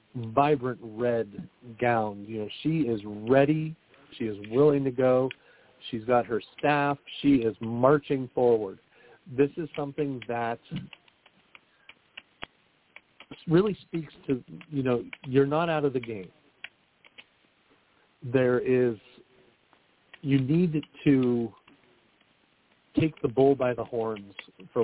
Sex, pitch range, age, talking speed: male, 115-145 Hz, 50-69, 115 wpm